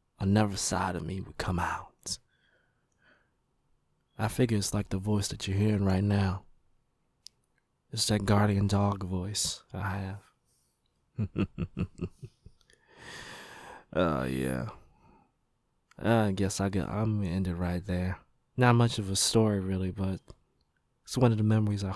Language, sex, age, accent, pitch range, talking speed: English, male, 20-39, American, 95-115 Hz, 150 wpm